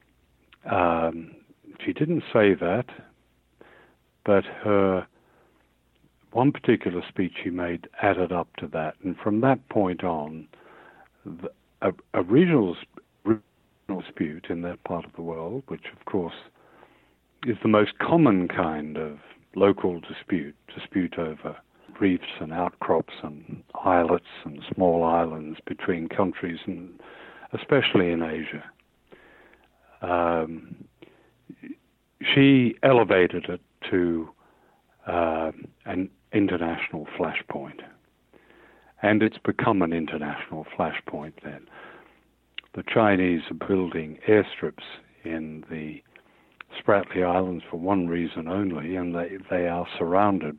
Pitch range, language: 80-95 Hz, English